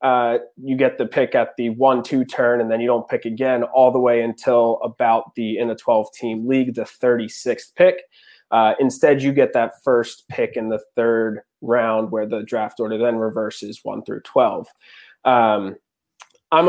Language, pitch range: English, 115-135 Hz